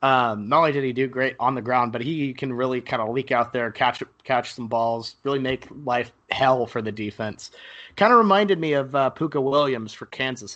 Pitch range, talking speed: 120-155 Hz, 225 wpm